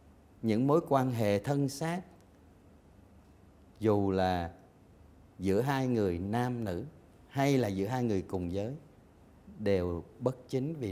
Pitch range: 90-120 Hz